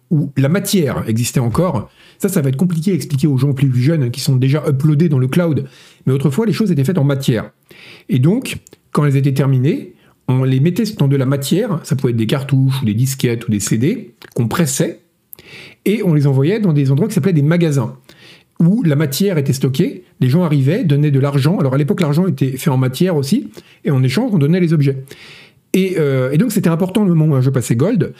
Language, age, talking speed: French, 40-59, 230 wpm